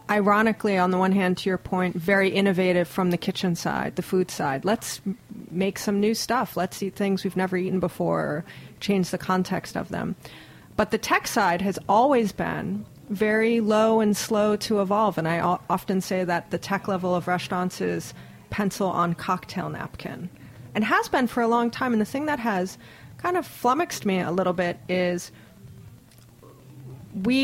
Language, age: English, 30-49